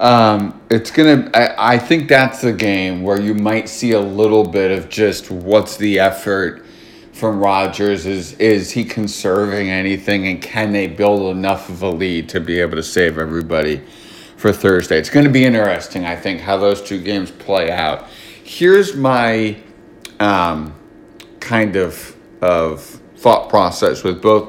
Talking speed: 165 wpm